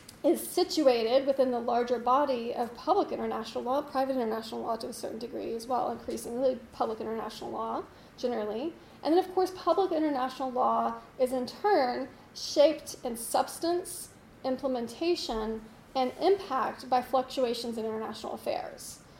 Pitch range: 235-275 Hz